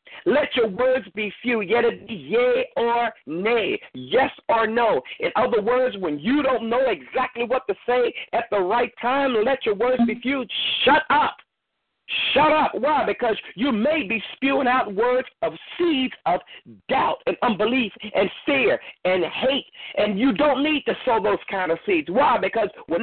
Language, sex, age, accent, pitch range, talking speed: English, male, 50-69, American, 230-300 Hz, 175 wpm